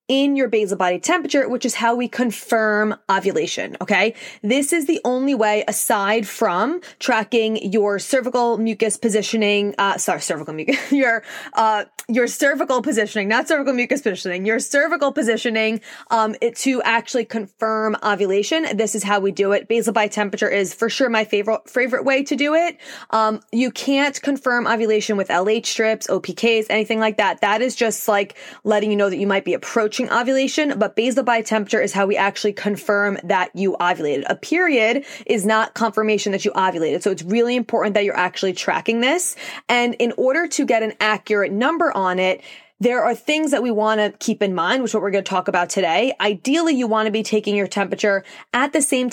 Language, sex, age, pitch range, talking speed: English, female, 20-39, 205-250 Hz, 195 wpm